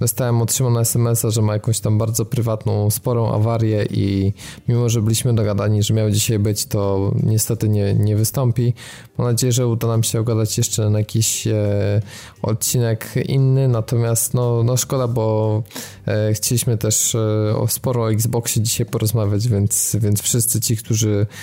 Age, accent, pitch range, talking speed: 20-39, native, 105-120 Hz, 160 wpm